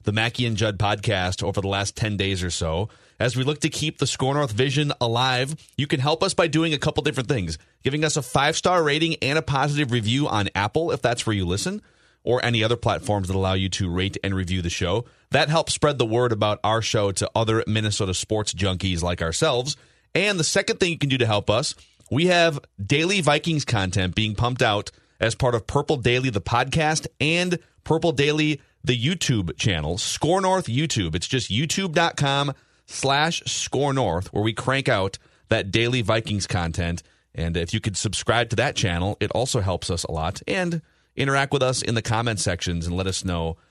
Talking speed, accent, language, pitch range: 205 wpm, American, English, 100-135 Hz